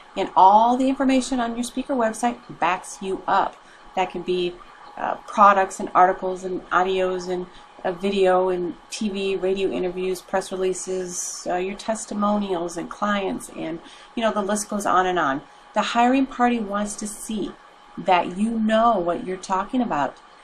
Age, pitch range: 40-59, 185-235 Hz